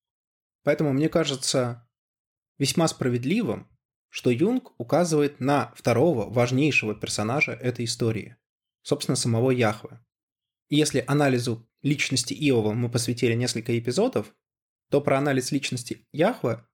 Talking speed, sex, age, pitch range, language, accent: 110 wpm, male, 20-39, 120-150 Hz, Russian, native